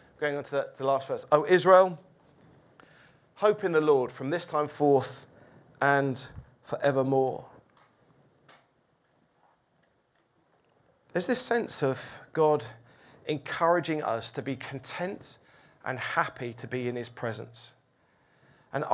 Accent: British